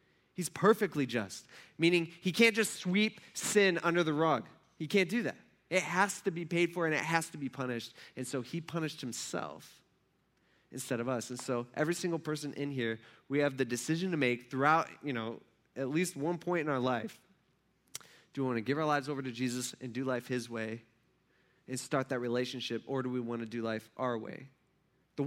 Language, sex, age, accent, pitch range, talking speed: English, male, 20-39, American, 120-165 Hz, 210 wpm